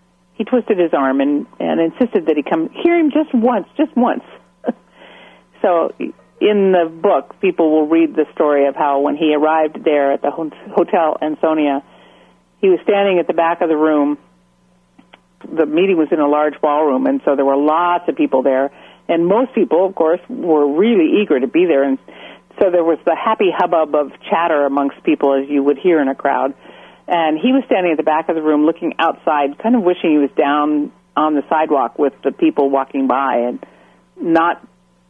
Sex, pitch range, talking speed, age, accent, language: female, 145-205 Hz, 200 wpm, 50-69, American, English